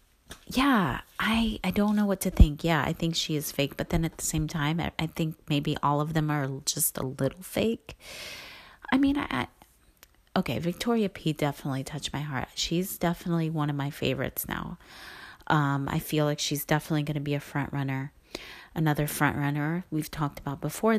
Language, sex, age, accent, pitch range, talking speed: English, female, 30-49, American, 145-180 Hz, 195 wpm